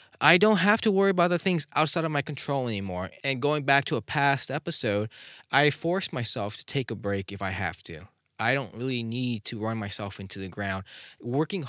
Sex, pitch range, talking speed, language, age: male, 100-140 Hz, 215 wpm, English, 20-39